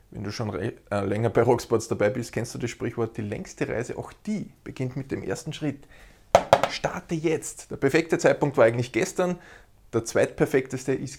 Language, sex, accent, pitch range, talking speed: German, male, Austrian, 115-140 Hz, 190 wpm